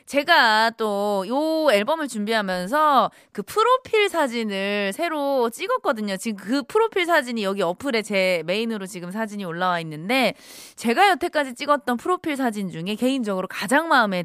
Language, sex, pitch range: Korean, female, 210-335 Hz